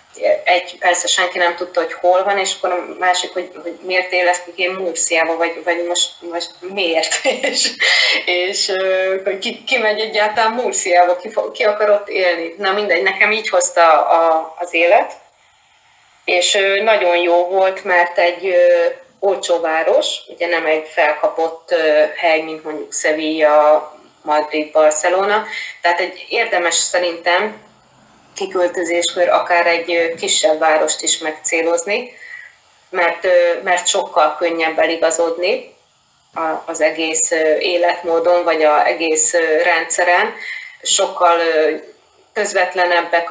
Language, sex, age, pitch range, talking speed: Hungarian, female, 20-39, 165-185 Hz, 120 wpm